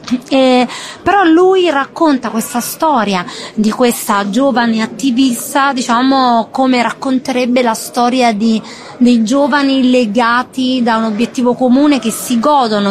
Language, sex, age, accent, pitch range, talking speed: English, female, 30-49, Italian, 225-270 Hz, 120 wpm